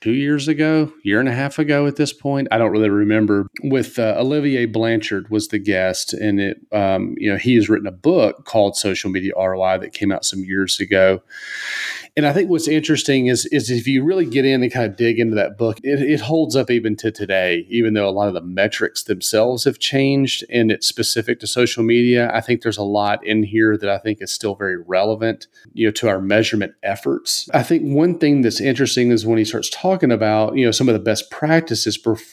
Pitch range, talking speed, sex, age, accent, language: 105-135 Hz, 230 wpm, male, 30-49, American, English